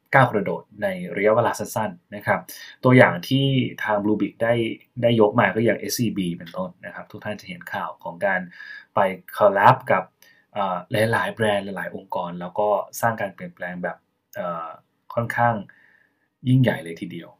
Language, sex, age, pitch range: Thai, male, 20-39, 105-125 Hz